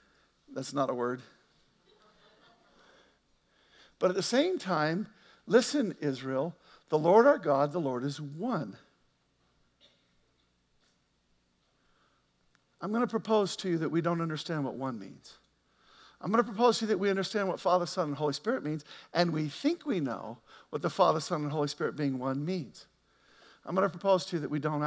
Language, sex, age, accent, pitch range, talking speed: English, male, 50-69, American, 165-235 Hz, 175 wpm